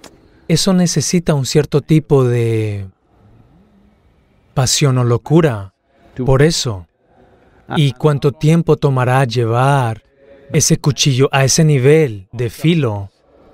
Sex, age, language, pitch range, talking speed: male, 30-49, Spanish, 125-155 Hz, 100 wpm